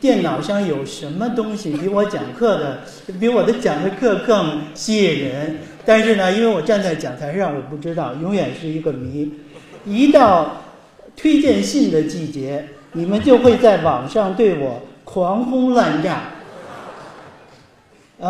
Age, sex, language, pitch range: 50-69, male, Chinese, 155-225 Hz